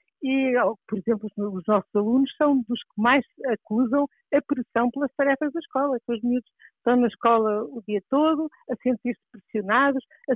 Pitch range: 215-270 Hz